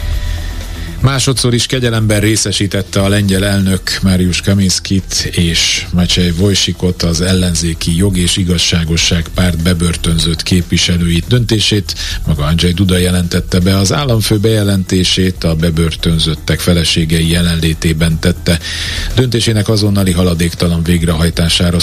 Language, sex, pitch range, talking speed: Hungarian, male, 85-100 Hz, 105 wpm